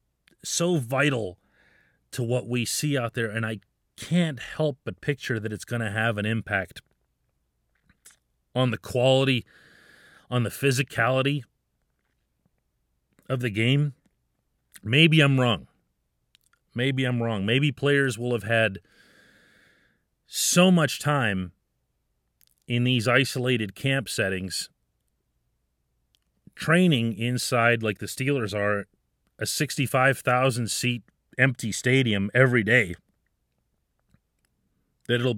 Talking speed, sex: 105 wpm, male